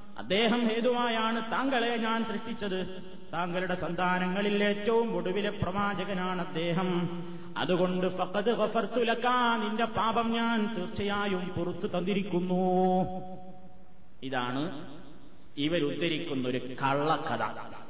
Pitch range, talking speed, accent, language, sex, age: 180-235 Hz, 70 wpm, native, Malayalam, male, 30-49